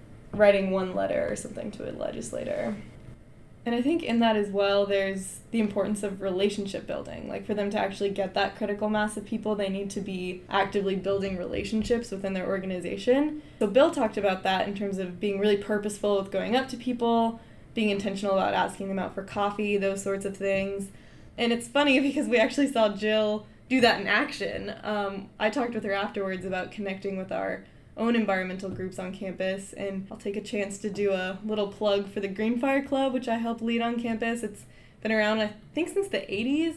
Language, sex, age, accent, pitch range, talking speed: English, female, 20-39, American, 195-220 Hz, 205 wpm